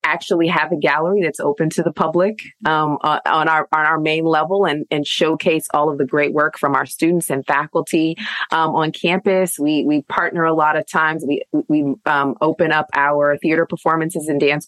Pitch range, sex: 150-190 Hz, female